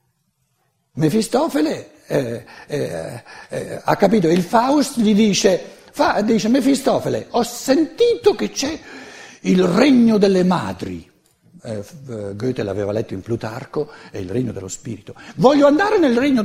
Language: Italian